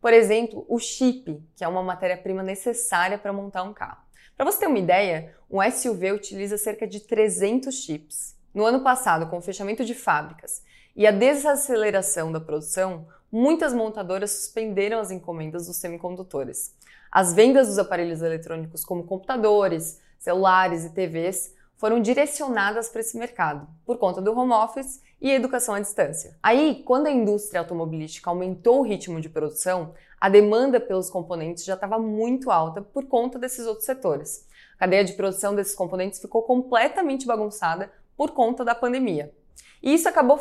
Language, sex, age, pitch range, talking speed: English, female, 20-39, 185-245 Hz, 165 wpm